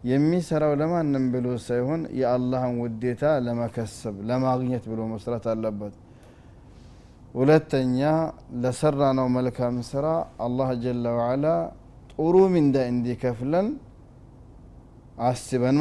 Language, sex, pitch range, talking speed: Amharic, male, 120-135 Hz, 90 wpm